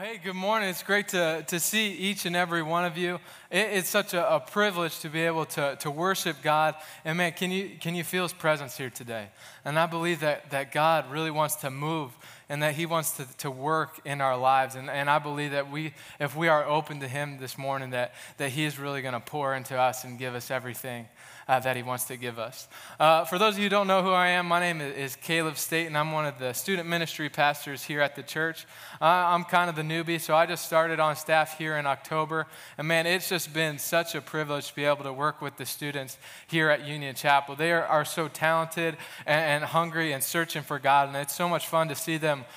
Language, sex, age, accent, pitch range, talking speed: English, male, 20-39, American, 140-170 Hz, 245 wpm